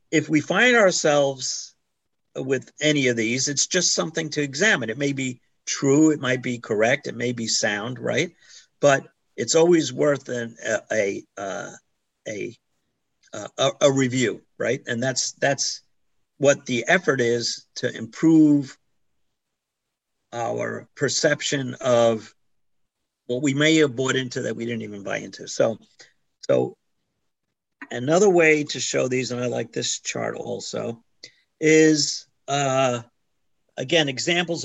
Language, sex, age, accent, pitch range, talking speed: English, male, 50-69, American, 120-150 Hz, 135 wpm